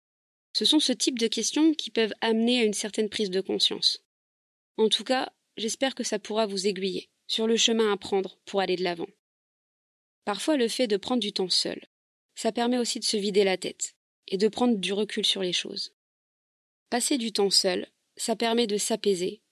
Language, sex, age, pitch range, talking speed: French, female, 20-39, 195-230 Hz, 200 wpm